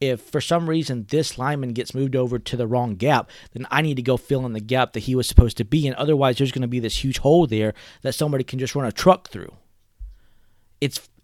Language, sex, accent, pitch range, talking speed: English, male, American, 110-150 Hz, 250 wpm